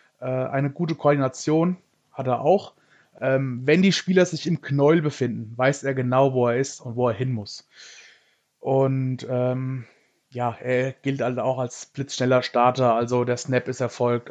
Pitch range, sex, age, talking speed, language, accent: 125-145 Hz, male, 20-39, 165 wpm, German, German